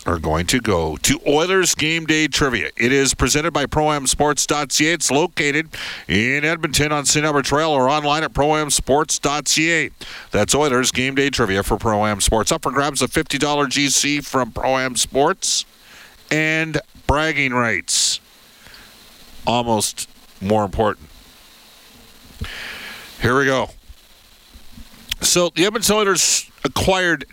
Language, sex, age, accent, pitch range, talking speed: English, male, 50-69, American, 120-150 Hz, 130 wpm